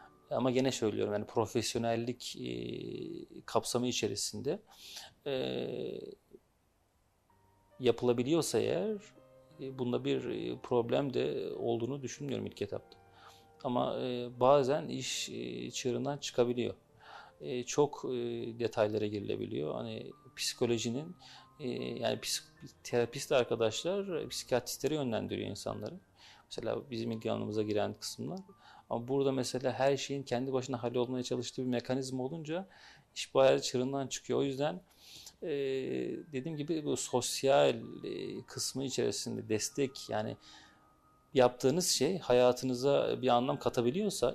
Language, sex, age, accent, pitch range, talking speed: Turkish, male, 40-59, native, 115-135 Hz, 105 wpm